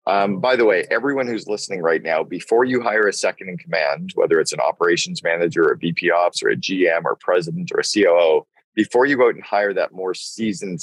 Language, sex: English, male